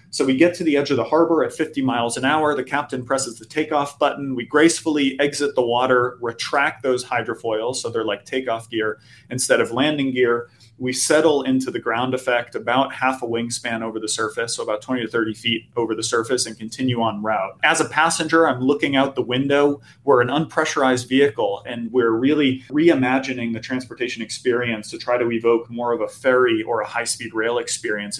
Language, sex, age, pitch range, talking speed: English, male, 30-49, 110-135 Hz, 205 wpm